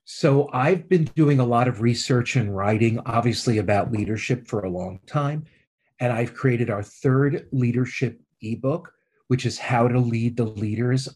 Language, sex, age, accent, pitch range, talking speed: English, male, 40-59, American, 115-135 Hz, 165 wpm